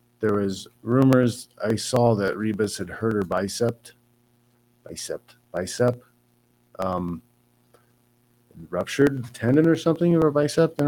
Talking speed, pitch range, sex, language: 140 wpm, 105-120 Hz, male, English